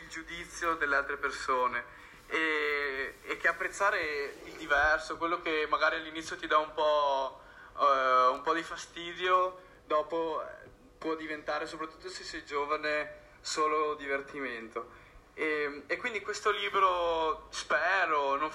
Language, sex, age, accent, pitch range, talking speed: Italian, male, 20-39, native, 150-175 Hz, 125 wpm